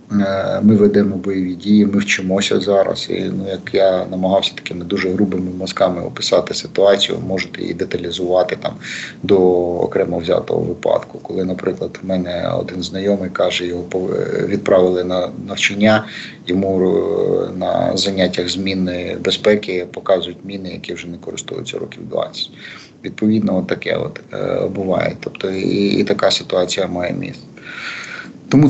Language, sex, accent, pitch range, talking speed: Ukrainian, male, native, 90-105 Hz, 135 wpm